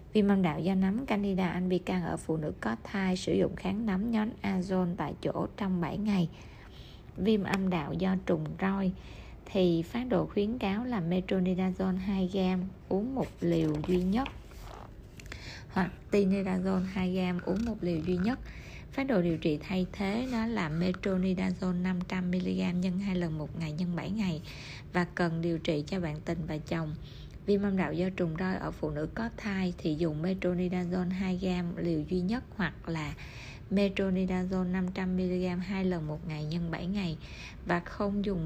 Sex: female